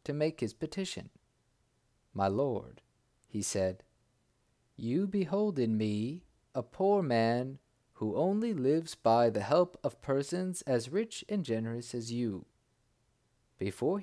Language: English